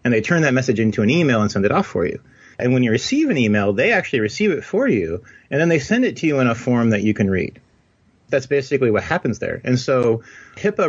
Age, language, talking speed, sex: 30-49, English, 265 wpm, male